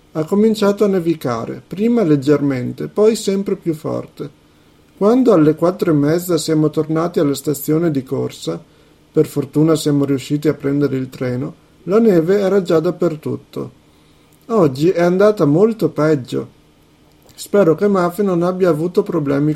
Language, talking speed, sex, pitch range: Italian, 140 wpm, male, 145-185 Hz